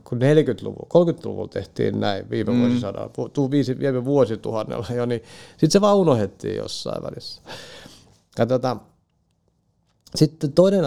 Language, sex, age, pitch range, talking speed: Finnish, male, 50-69, 110-140 Hz, 105 wpm